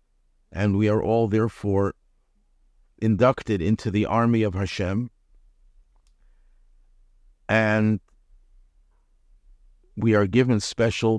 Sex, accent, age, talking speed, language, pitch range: male, American, 50-69, 85 wpm, English, 95-115 Hz